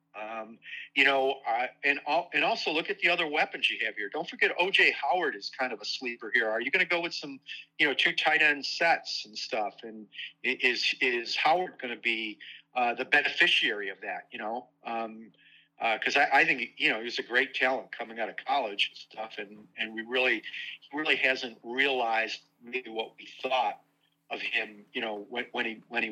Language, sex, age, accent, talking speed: English, male, 40-59, American, 215 wpm